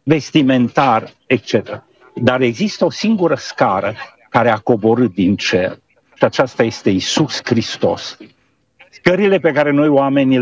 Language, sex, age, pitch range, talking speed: Romanian, male, 50-69, 125-180 Hz, 125 wpm